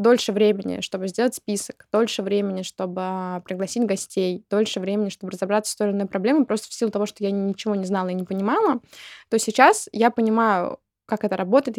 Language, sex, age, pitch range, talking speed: Russian, female, 20-39, 200-240 Hz, 195 wpm